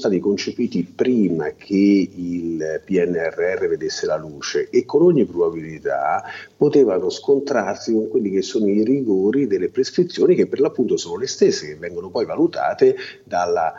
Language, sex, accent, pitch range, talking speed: Italian, male, native, 345-420 Hz, 150 wpm